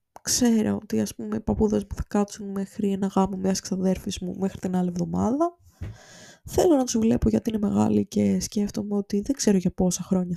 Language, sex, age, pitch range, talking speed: Greek, female, 20-39, 185-235 Hz, 190 wpm